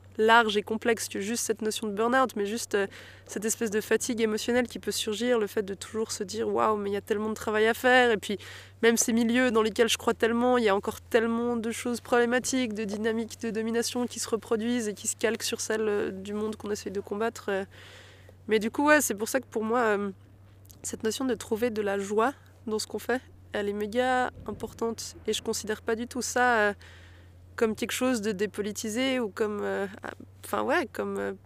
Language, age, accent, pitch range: French, 20-39, French, 195-230 Hz